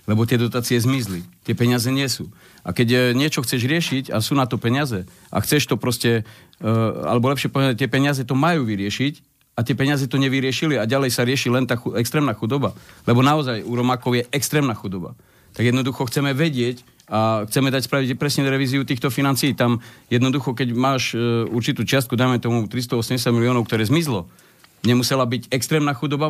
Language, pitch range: English, 120-145 Hz